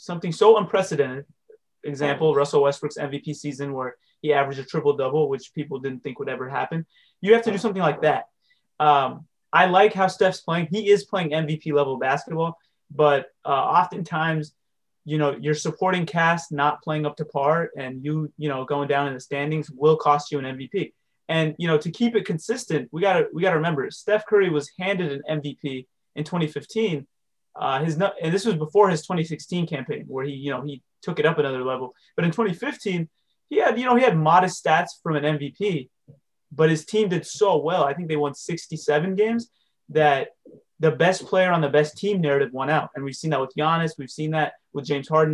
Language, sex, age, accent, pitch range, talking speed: English, male, 20-39, American, 145-180 Hz, 210 wpm